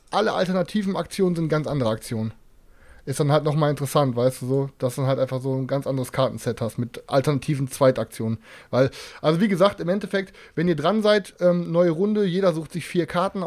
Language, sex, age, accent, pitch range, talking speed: German, male, 20-39, German, 130-170 Hz, 210 wpm